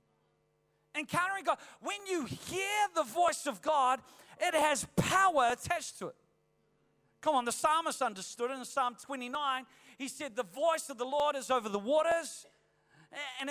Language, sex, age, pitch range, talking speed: English, male, 40-59, 255-315 Hz, 160 wpm